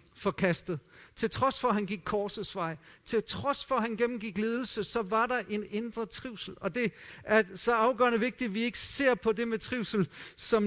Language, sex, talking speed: Danish, male, 210 wpm